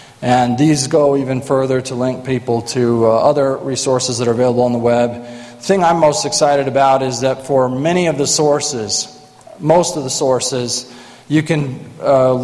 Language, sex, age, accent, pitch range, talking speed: English, male, 40-59, American, 125-145 Hz, 185 wpm